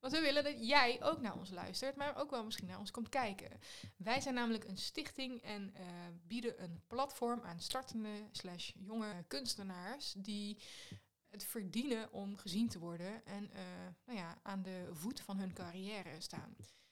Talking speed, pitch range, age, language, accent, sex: 175 wpm, 195-255 Hz, 20-39, Dutch, Dutch, female